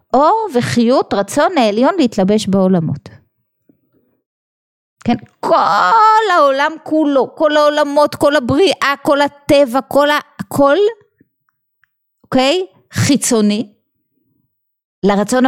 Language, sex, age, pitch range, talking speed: Hebrew, female, 30-49, 185-290 Hz, 85 wpm